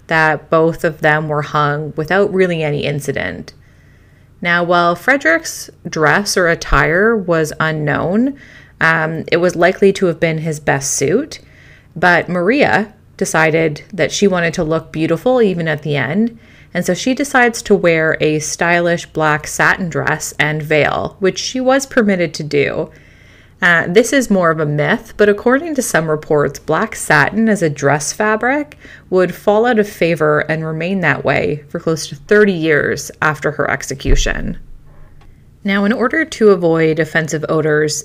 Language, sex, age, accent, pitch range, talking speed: English, female, 30-49, American, 150-200 Hz, 160 wpm